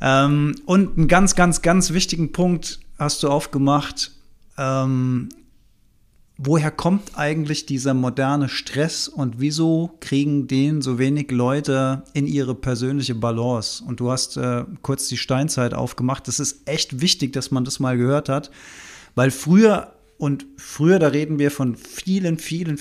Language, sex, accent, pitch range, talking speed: German, male, German, 135-170 Hz, 145 wpm